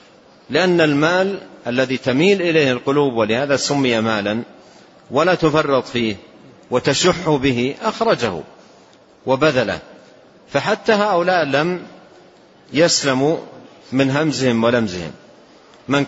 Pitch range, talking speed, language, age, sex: 115-145 Hz, 90 wpm, Arabic, 50-69, male